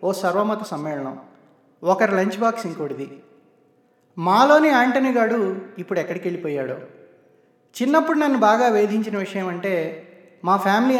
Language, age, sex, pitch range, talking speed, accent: Telugu, 30-49, male, 175-235 Hz, 110 wpm, native